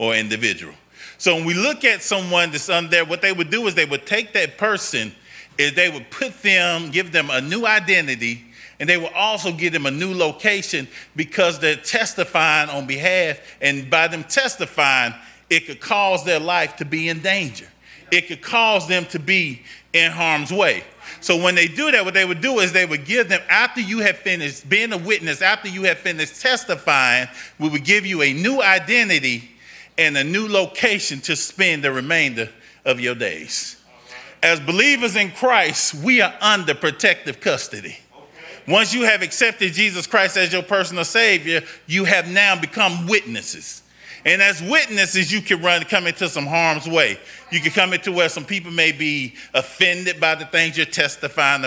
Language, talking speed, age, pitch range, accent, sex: English, 185 wpm, 30-49, 160-200 Hz, American, male